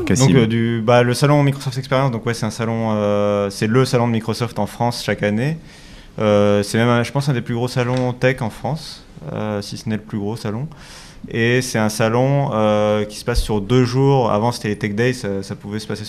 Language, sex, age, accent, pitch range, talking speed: French, male, 30-49, French, 105-125 Hz, 245 wpm